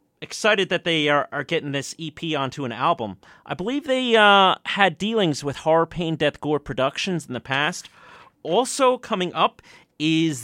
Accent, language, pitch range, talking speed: American, English, 150-200 Hz, 170 wpm